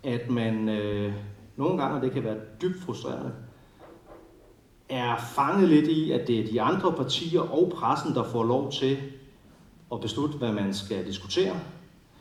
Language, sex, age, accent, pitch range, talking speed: Danish, male, 40-59, native, 100-135 Hz, 160 wpm